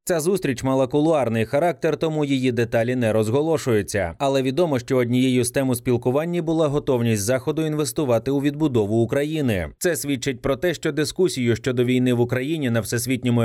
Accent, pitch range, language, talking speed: native, 120-150 Hz, Ukrainian, 165 wpm